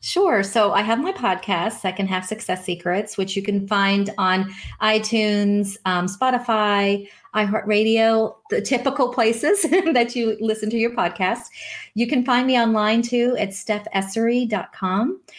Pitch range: 200-235 Hz